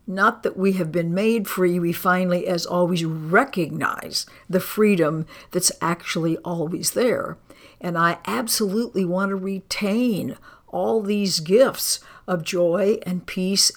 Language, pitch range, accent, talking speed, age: English, 170-200 Hz, American, 135 wpm, 60-79